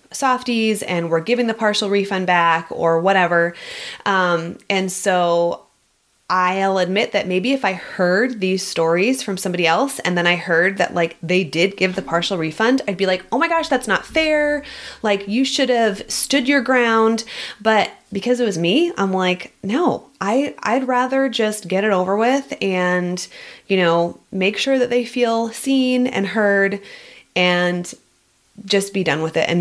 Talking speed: 175 wpm